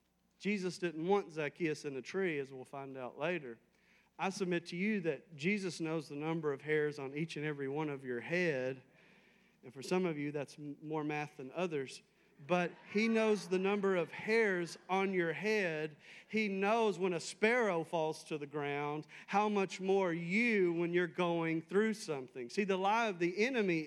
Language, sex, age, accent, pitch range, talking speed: English, male, 40-59, American, 150-205 Hz, 190 wpm